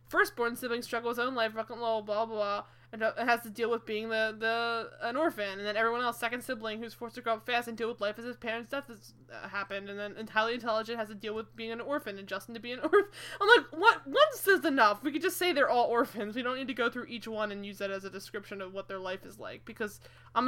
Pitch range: 200-245 Hz